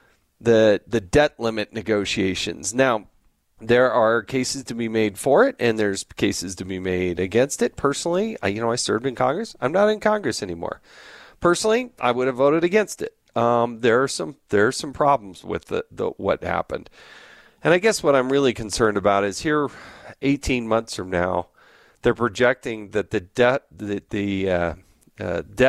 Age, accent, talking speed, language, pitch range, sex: 40-59, American, 180 wpm, English, 110-145 Hz, male